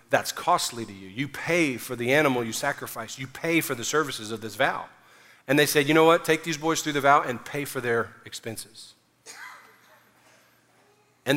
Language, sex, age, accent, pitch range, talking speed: English, male, 40-59, American, 115-145 Hz, 195 wpm